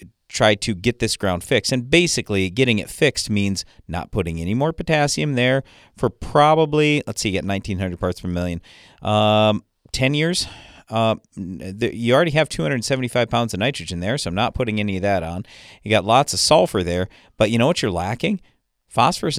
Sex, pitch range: male, 95-125 Hz